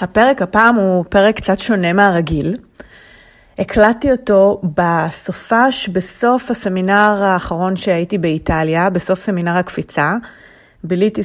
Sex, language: female, English